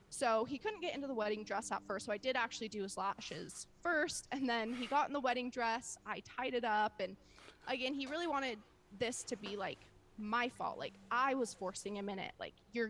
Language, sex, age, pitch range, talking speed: English, female, 20-39, 205-265 Hz, 235 wpm